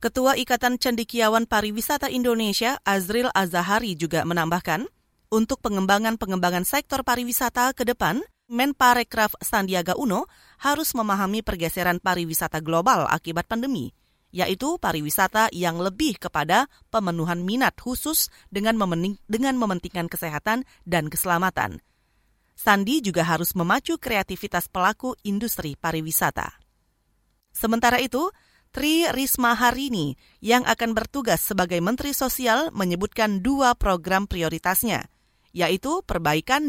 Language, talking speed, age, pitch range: Indonesian, 105 wpm, 30-49, 180-245 Hz